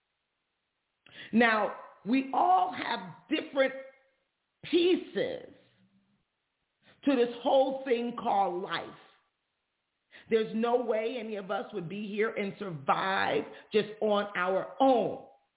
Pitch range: 210-270 Hz